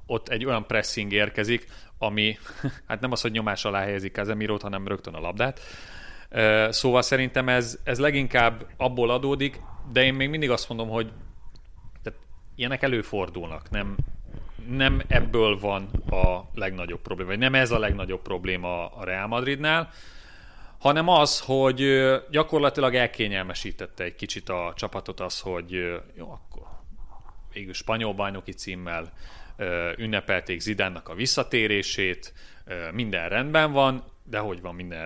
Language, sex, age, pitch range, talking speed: Hungarian, male, 30-49, 90-125 Hz, 135 wpm